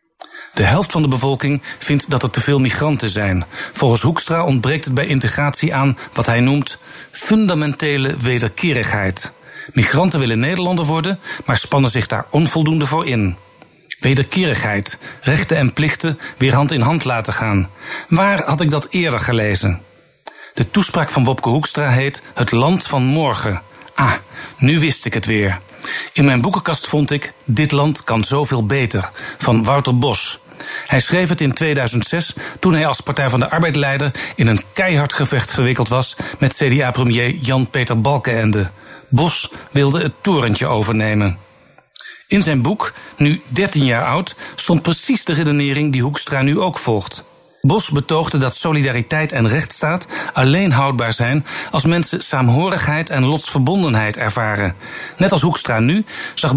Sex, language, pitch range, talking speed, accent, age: male, Dutch, 120-155 Hz, 150 wpm, Dutch, 60-79